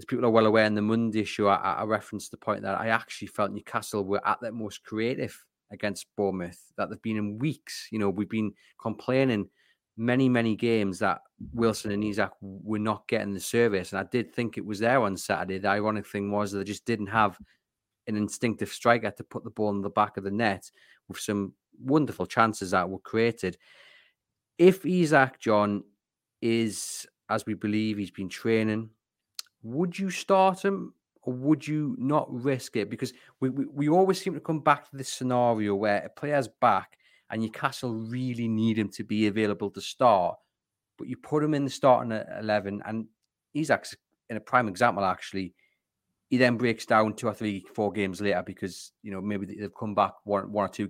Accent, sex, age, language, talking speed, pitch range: British, male, 30-49, English, 200 wpm, 105-125 Hz